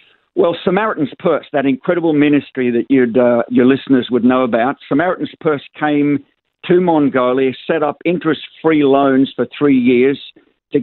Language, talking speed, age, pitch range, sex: English, 150 wpm, 50-69, 125-155 Hz, male